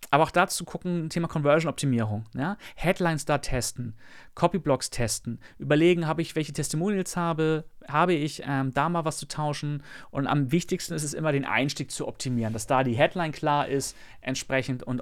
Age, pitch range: 30-49, 120-145 Hz